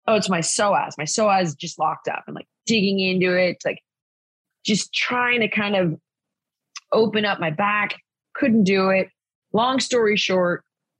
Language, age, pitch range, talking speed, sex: English, 20-39, 170-245 Hz, 165 wpm, female